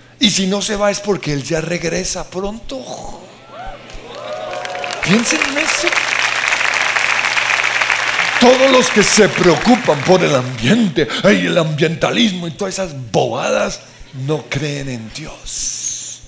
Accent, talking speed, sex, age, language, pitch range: Mexican, 120 wpm, male, 50-69, Spanish, 135-190 Hz